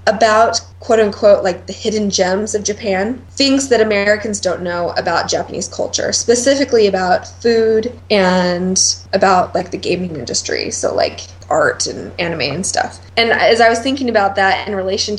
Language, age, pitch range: English, 20-39, 185-220 Hz